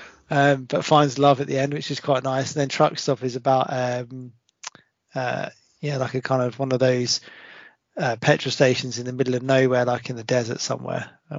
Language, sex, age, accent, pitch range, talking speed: English, male, 20-39, British, 125-135 Hz, 215 wpm